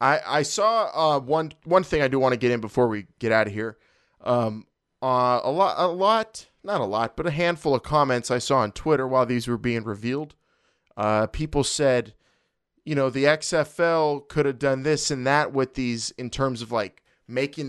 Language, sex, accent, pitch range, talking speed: English, male, American, 120-150 Hz, 210 wpm